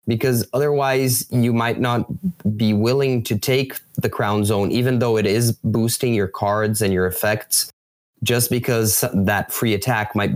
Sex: male